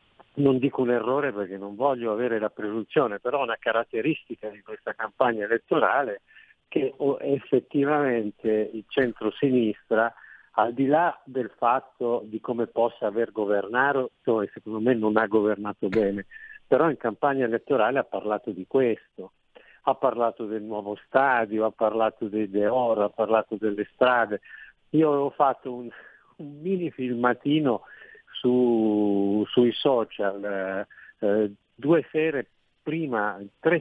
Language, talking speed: Italian, 135 wpm